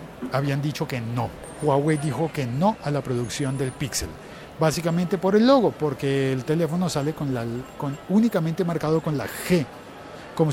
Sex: male